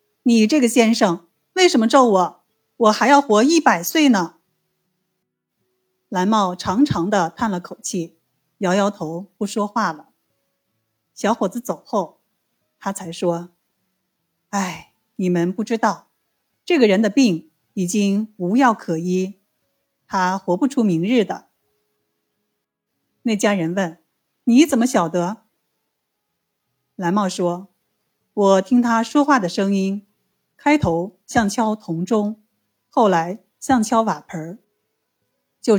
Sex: female